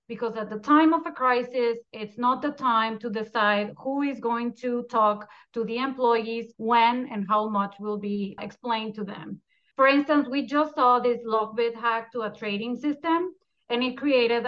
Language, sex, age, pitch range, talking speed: English, female, 30-49, 220-270 Hz, 185 wpm